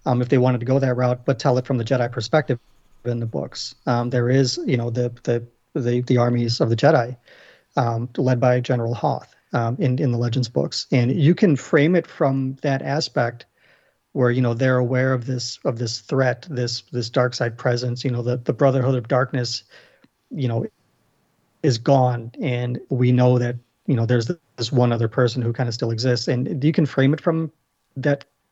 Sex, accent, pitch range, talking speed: male, American, 125-145 Hz, 210 wpm